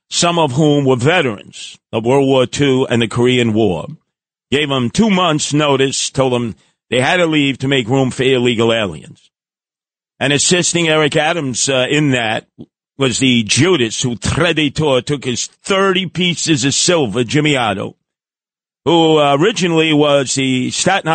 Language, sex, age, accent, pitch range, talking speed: English, male, 50-69, American, 120-150 Hz, 155 wpm